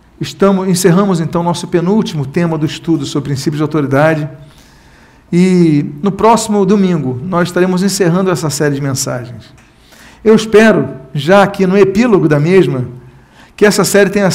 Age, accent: 50-69, Brazilian